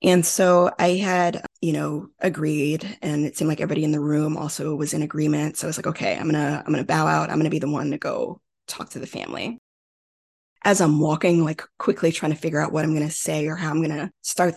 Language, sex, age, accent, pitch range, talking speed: English, female, 20-39, American, 155-185 Hz, 265 wpm